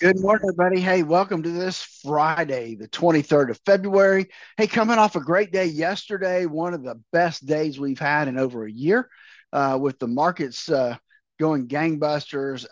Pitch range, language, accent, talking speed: 140-185 Hz, English, American, 175 wpm